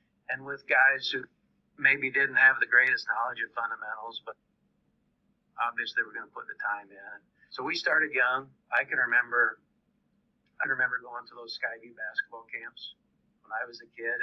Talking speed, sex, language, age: 180 wpm, male, English, 50-69